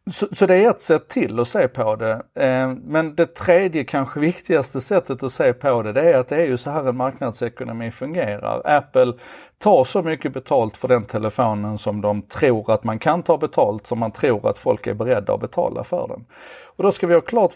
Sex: male